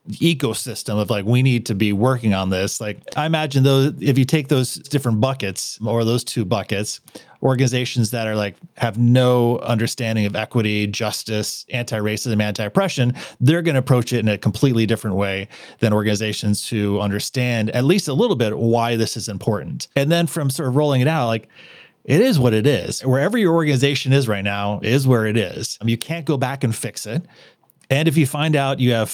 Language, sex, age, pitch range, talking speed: English, male, 30-49, 110-145 Hz, 205 wpm